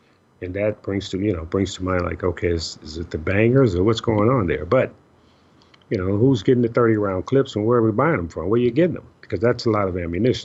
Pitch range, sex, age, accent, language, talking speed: 105-130 Hz, male, 50-69, American, English, 275 wpm